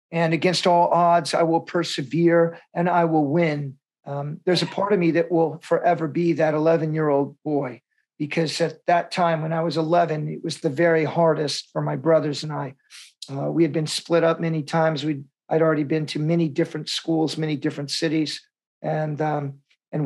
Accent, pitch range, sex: American, 150-170 Hz, male